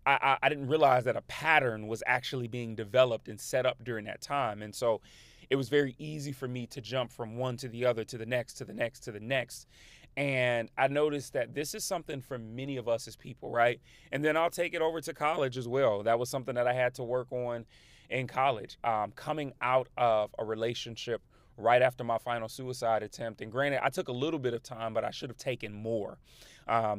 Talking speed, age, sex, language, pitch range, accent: 230 wpm, 30-49, male, English, 115-135 Hz, American